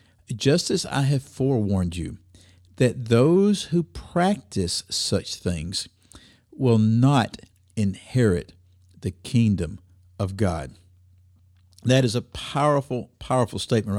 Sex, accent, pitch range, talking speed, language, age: male, American, 95-125 Hz, 105 wpm, English, 50-69